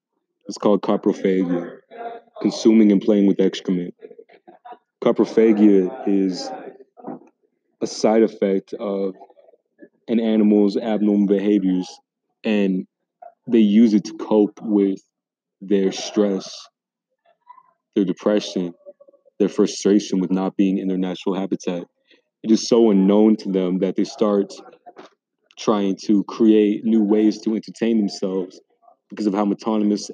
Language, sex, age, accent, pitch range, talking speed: English, male, 30-49, American, 95-110 Hz, 115 wpm